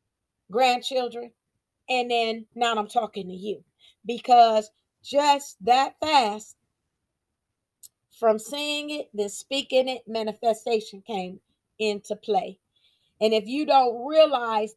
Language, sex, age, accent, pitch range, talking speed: English, female, 40-59, American, 205-250 Hz, 110 wpm